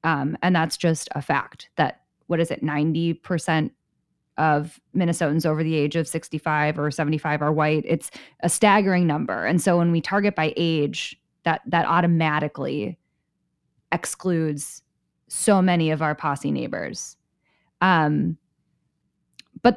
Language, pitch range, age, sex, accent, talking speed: English, 160-190 Hz, 10-29, female, American, 135 wpm